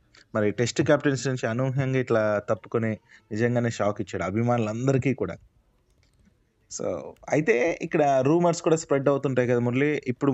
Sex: male